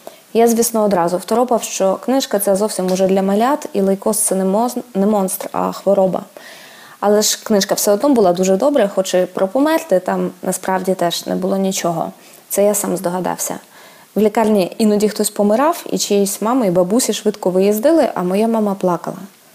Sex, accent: female, native